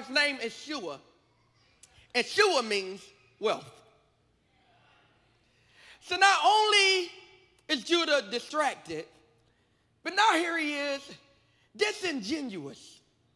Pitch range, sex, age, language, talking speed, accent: 235-315 Hz, male, 30-49, English, 85 wpm, American